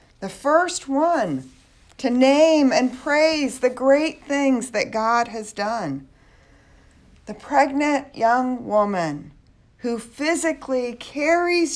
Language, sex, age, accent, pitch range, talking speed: English, female, 40-59, American, 180-270 Hz, 105 wpm